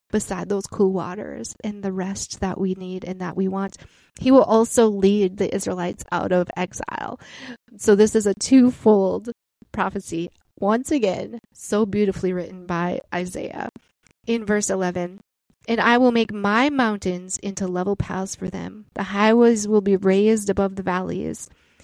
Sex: female